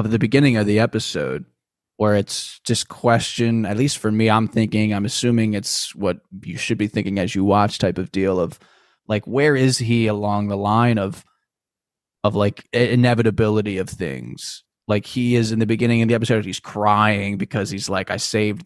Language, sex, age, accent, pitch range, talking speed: English, male, 20-39, American, 105-120 Hz, 190 wpm